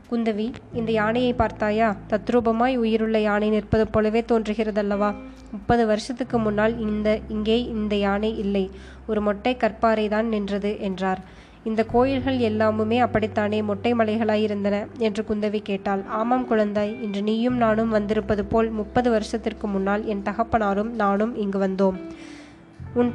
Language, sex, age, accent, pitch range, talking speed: Tamil, female, 20-39, native, 205-230 Hz, 125 wpm